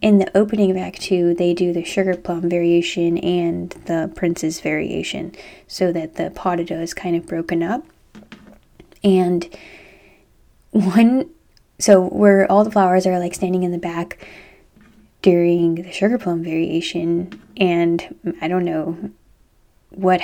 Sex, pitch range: female, 175-200 Hz